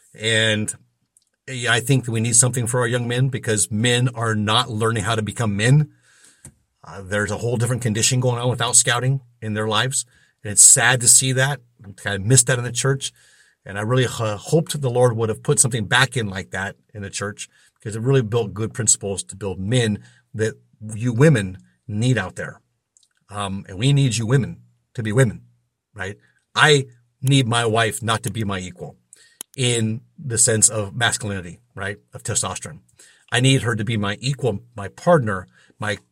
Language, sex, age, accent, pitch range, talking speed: English, male, 50-69, American, 110-135 Hz, 195 wpm